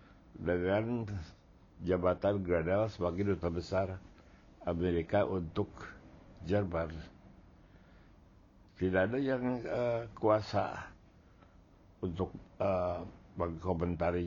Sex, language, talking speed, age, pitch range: male, Indonesian, 70 wpm, 60-79, 85-95 Hz